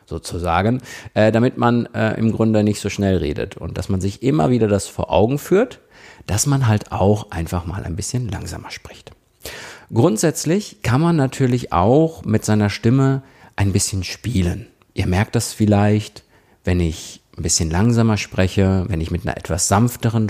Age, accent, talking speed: 50-69, German, 170 wpm